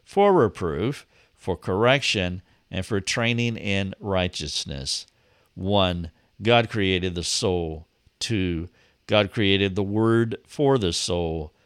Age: 50-69